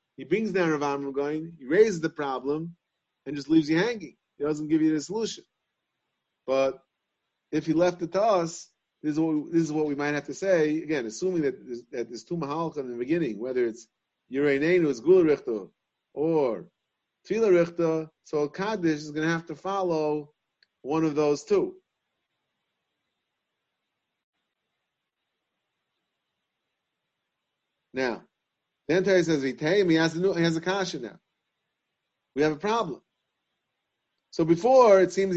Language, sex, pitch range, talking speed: English, male, 145-175 Hz, 140 wpm